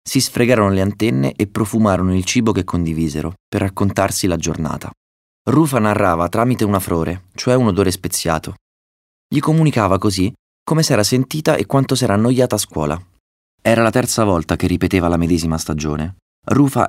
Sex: male